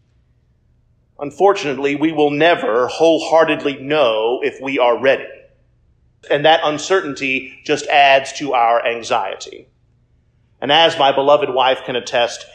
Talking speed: 120 wpm